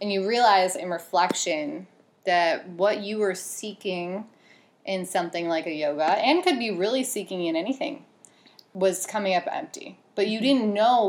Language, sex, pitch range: English, female, 175-220 Hz